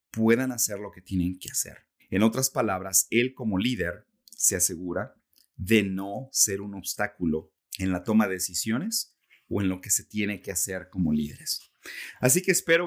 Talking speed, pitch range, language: 175 wpm, 95-125 Hz, Spanish